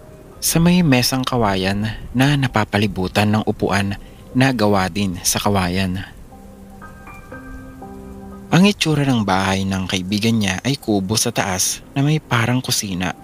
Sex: male